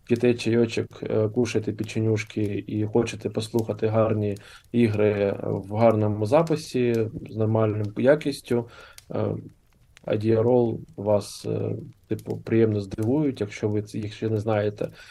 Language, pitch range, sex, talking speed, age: Ukrainian, 110-125 Hz, male, 105 wpm, 20-39